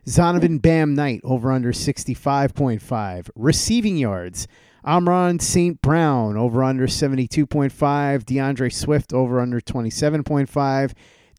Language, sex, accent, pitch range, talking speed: English, male, American, 125-155 Hz, 100 wpm